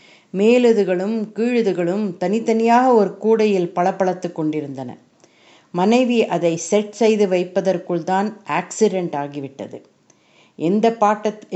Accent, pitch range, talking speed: native, 170-220 Hz, 90 wpm